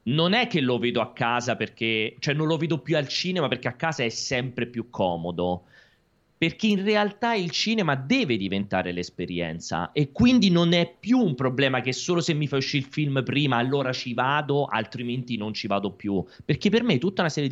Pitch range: 100-145 Hz